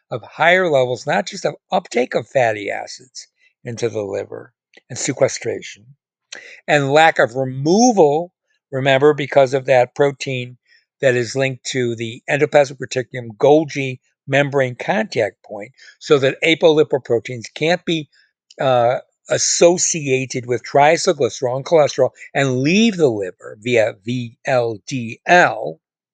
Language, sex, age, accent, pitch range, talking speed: English, male, 60-79, American, 125-160 Hz, 120 wpm